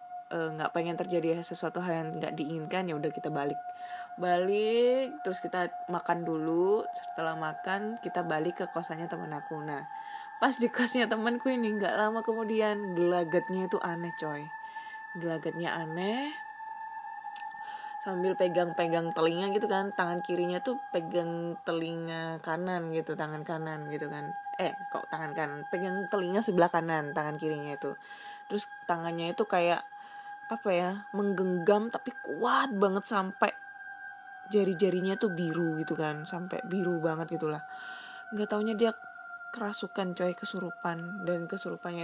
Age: 20-39